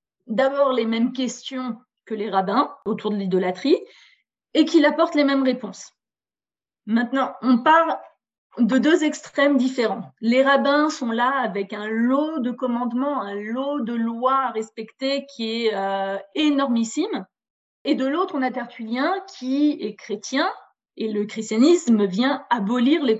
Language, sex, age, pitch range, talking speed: French, female, 30-49, 220-275 Hz, 145 wpm